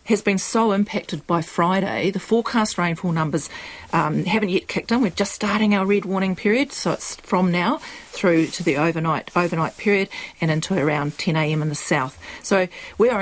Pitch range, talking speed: 160-200 Hz, 185 wpm